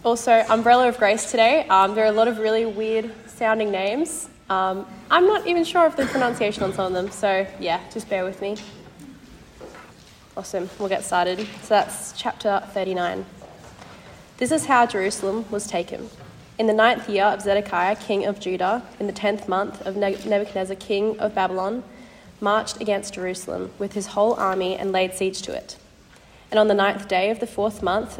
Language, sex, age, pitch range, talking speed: English, female, 20-39, 190-220 Hz, 185 wpm